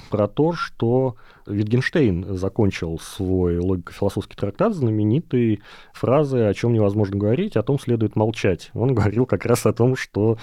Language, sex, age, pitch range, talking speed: Russian, male, 30-49, 95-115 Hz, 145 wpm